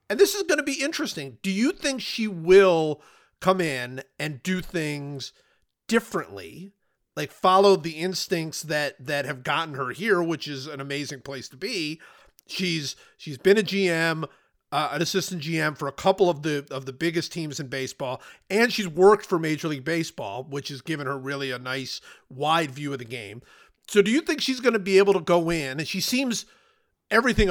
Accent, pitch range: American, 140-190 Hz